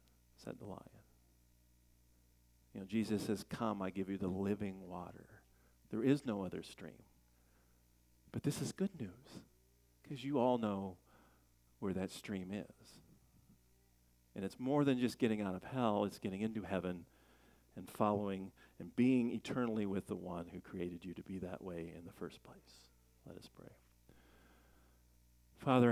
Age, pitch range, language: 50-69, 85-110 Hz, English